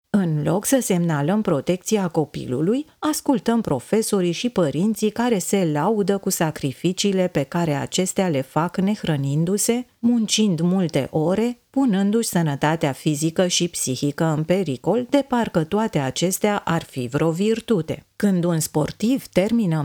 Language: Romanian